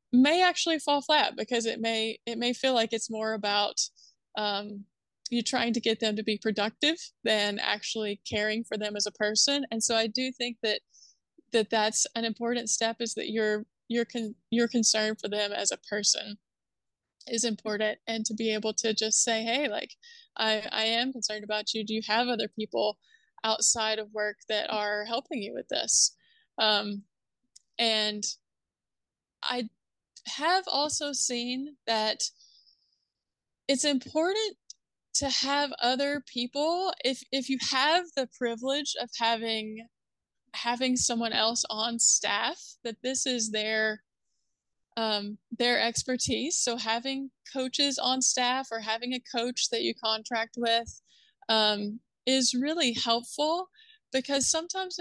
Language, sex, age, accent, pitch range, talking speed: English, female, 20-39, American, 220-265 Hz, 150 wpm